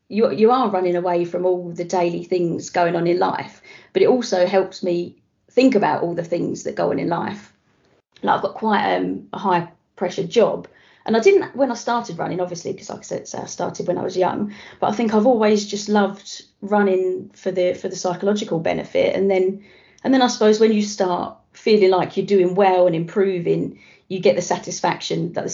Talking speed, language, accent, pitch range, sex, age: 220 wpm, English, British, 175-205 Hz, female, 30-49